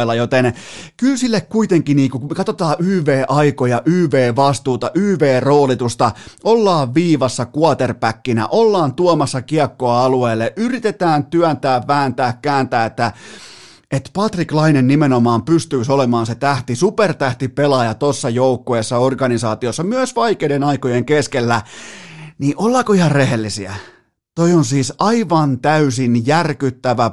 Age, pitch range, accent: 30-49, 120-155 Hz, native